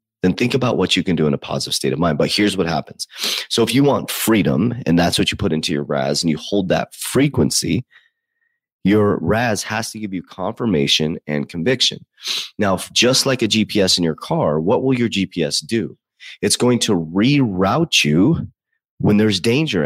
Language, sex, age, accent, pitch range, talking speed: English, male, 30-49, American, 90-115 Hz, 195 wpm